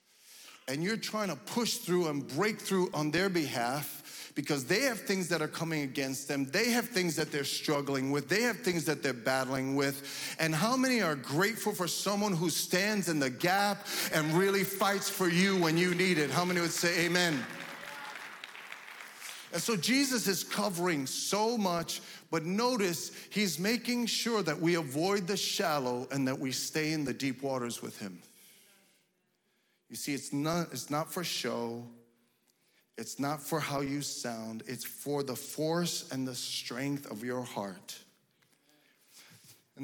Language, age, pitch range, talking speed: English, 40-59, 130-180 Hz, 170 wpm